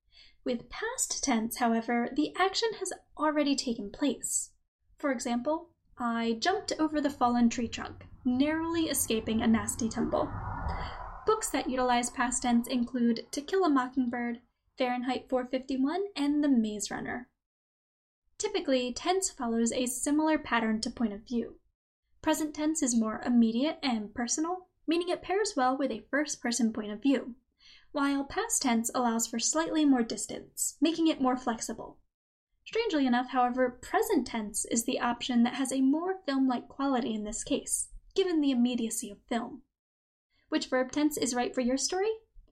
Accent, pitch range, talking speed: American, 240-305 Hz, 155 wpm